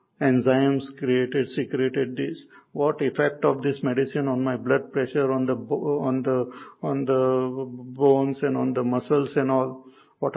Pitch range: 130-165 Hz